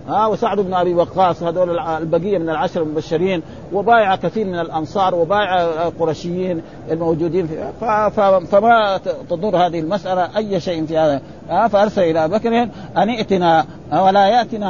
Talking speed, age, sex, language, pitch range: 140 wpm, 50-69, male, Arabic, 165-220 Hz